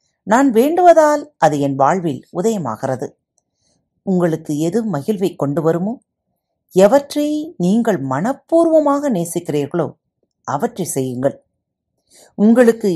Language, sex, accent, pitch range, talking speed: Tamil, female, native, 150-230 Hz, 85 wpm